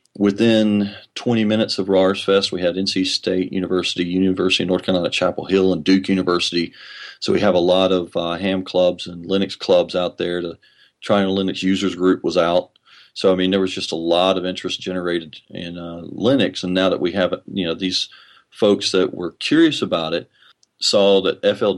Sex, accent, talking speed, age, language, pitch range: male, American, 200 wpm, 40-59, English, 90-105 Hz